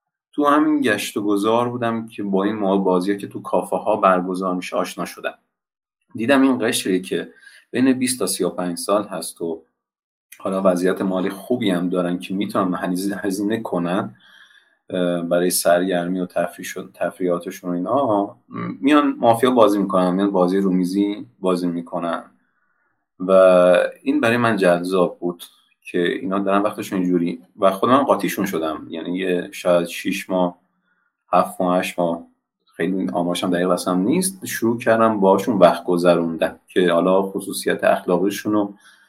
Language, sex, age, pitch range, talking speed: Persian, male, 30-49, 90-115 Hz, 145 wpm